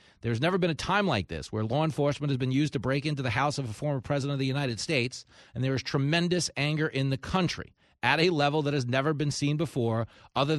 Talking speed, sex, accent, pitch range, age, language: 250 wpm, male, American, 115-145 Hz, 30-49, English